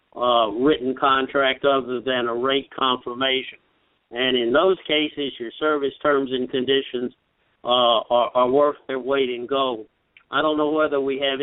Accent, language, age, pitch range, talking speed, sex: American, English, 50-69, 130-150 Hz, 170 wpm, male